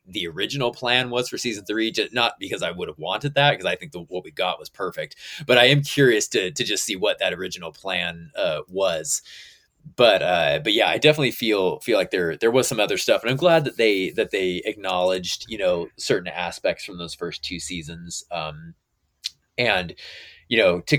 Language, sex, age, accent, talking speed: English, male, 30-49, American, 210 wpm